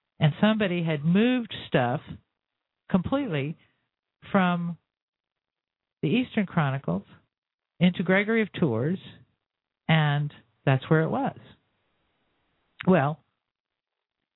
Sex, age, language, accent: male, 50-69, English, American